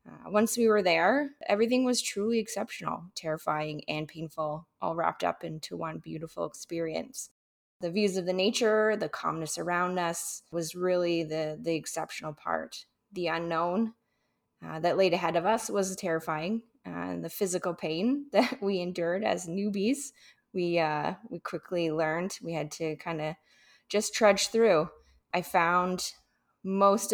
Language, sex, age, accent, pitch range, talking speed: English, female, 20-39, American, 160-210 Hz, 155 wpm